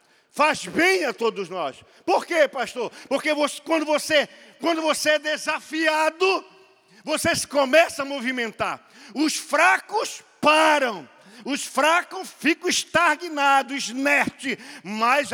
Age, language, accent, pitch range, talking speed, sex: 50-69, Portuguese, Brazilian, 265-345 Hz, 115 wpm, male